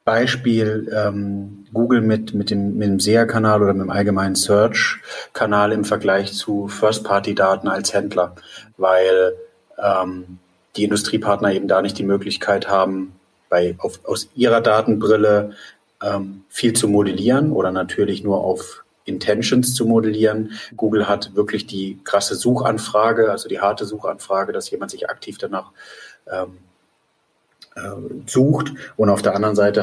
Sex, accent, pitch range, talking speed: male, German, 95-110 Hz, 140 wpm